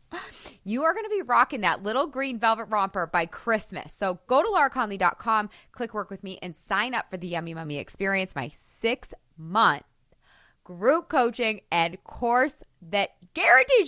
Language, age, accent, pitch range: English, 20-39, American, 160-220 Hz